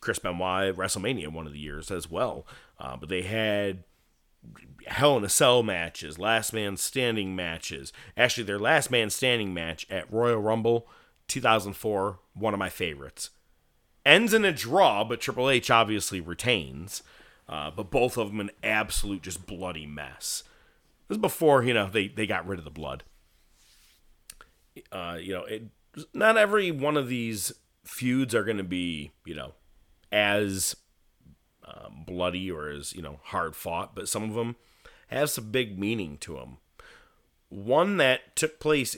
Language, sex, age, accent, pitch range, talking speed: English, male, 40-59, American, 85-120 Hz, 165 wpm